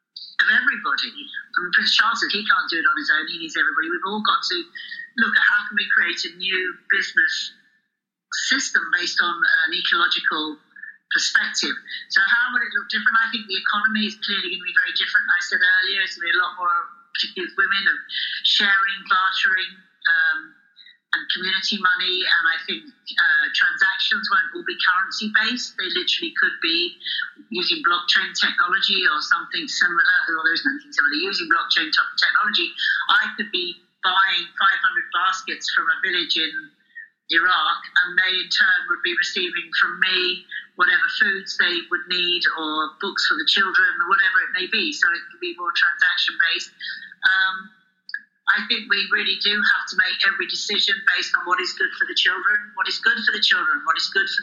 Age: 50-69